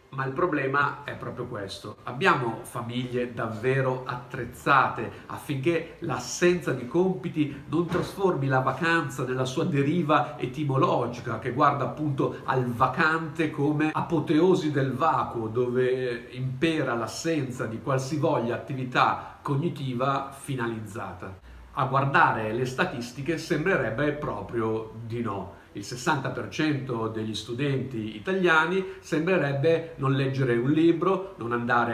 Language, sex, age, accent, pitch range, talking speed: Italian, male, 50-69, native, 120-150 Hz, 110 wpm